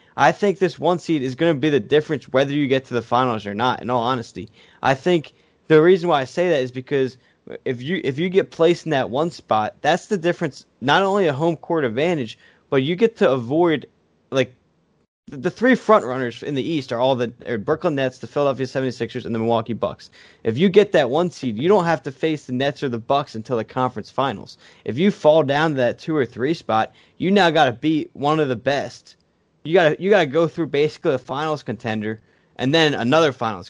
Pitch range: 125-160 Hz